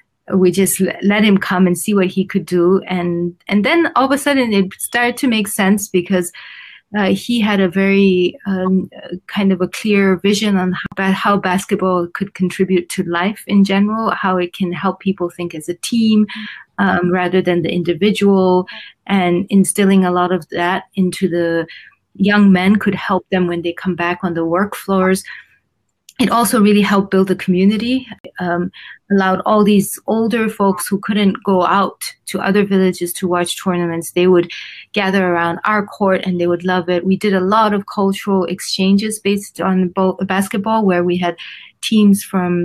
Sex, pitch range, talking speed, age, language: female, 180-200 Hz, 180 wpm, 30-49, English